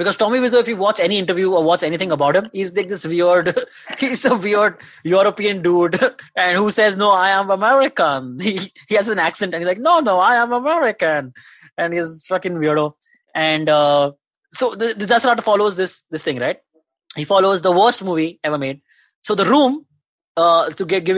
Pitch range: 175-240 Hz